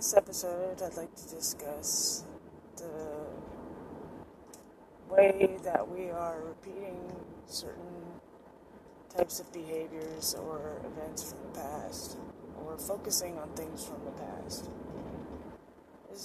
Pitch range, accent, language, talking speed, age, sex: 155-185 Hz, American, English, 110 wpm, 20-39, female